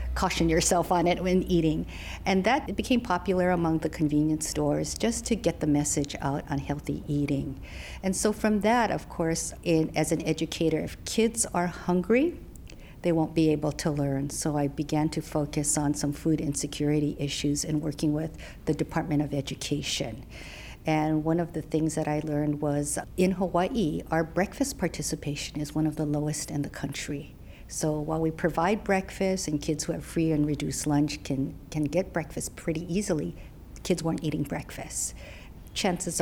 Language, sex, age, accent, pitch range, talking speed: English, female, 50-69, American, 150-175 Hz, 175 wpm